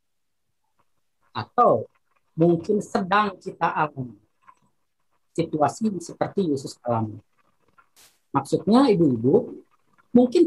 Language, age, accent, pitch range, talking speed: Indonesian, 40-59, native, 150-230 Hz, 70 wpm